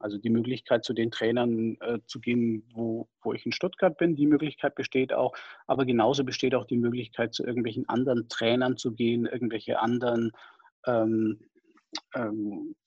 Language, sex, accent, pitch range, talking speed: German, male, German, 120-145 Hz, 165 wpm